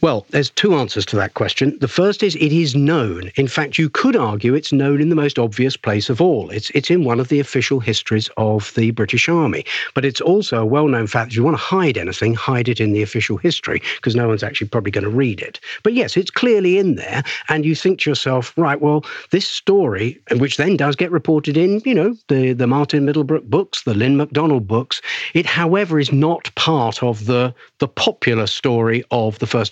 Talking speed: 225 wpm